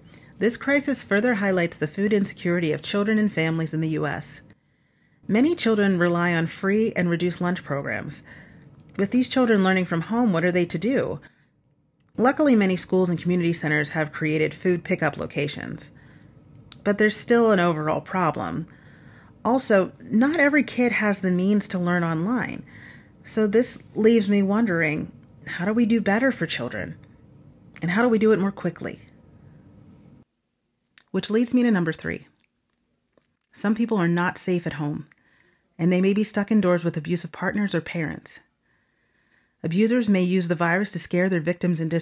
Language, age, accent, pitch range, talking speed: English, 30-49, American, 165-210 Hz, 165 wpm